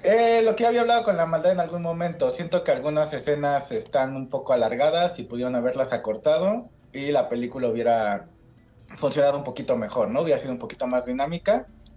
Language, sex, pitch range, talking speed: Spanish, male, 120-185 Hz, 190 wpm